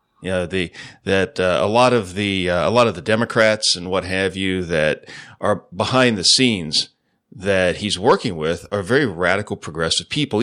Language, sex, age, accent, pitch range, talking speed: English, male, 40-59, American, 95-130 Hz, 190 wpm